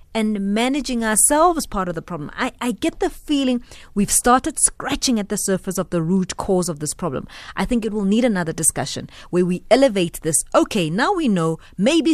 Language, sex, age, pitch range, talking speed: English, female, 30-49, 175-245 Hz, 205 wpm